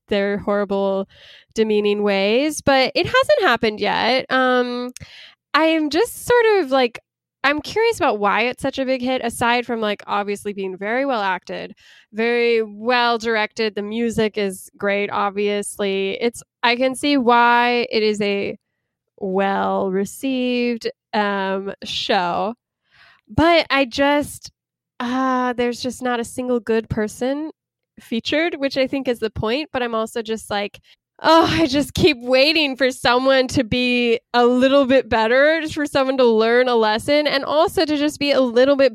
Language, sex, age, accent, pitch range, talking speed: English, female, 10-29, American, 220-270 Hz, 160 wpm